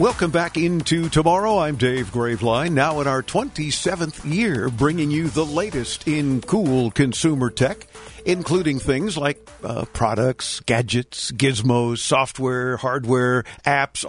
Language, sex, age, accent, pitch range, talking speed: English, male, 50-69, American, 120-155 Hz, 130 wpm